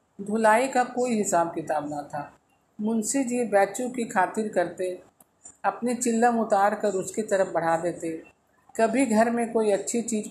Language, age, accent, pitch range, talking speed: Hindi, 50-69, native, 195-235 Hz, 155 wpm